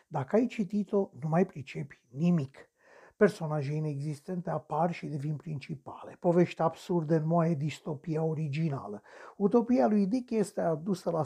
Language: Romanian